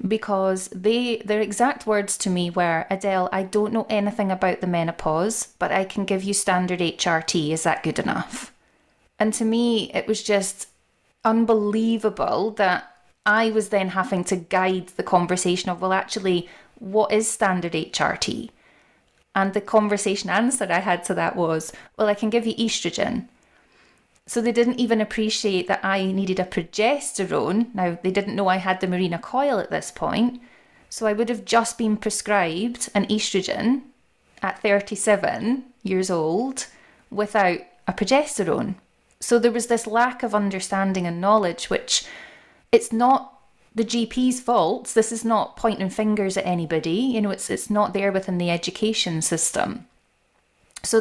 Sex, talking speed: female, 160 wpm